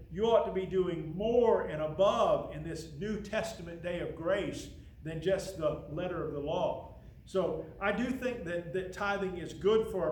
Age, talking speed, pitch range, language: 50-69, 195 wpm, 160-205 Hz, English